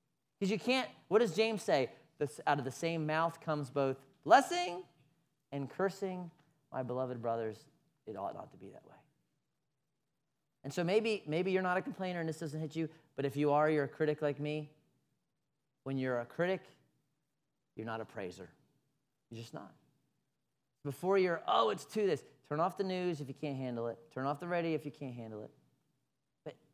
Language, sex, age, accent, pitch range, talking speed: English, male, 30-49, American, 145-205 Hz, 195 wpm